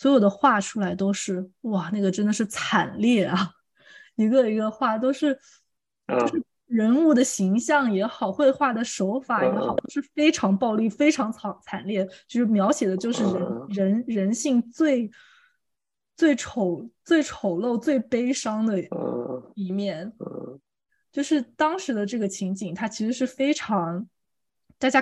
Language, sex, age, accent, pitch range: Chinese, female, 20-39, native, 195-265 Hz